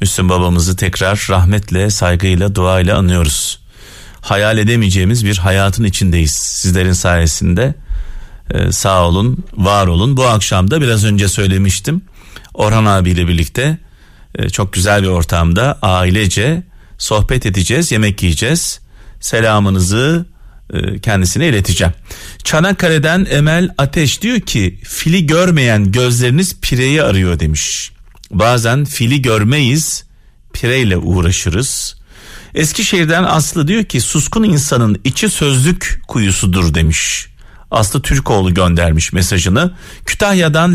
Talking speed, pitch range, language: 105 wpm, 95-145 Hz, Turkish